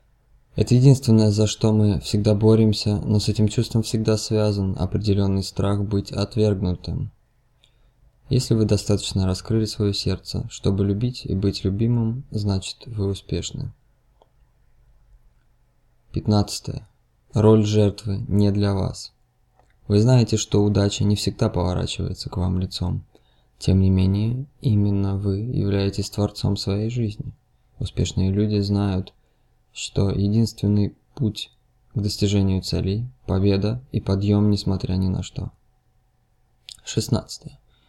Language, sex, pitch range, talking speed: Russian, male, 100-115 Hz, 115 wpm